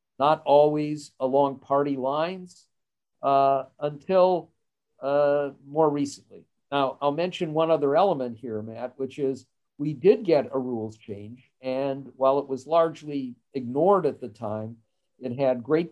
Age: 50-69